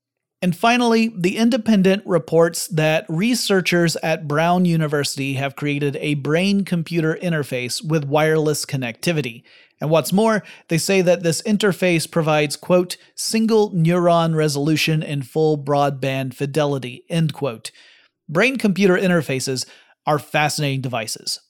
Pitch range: 145-180 Hz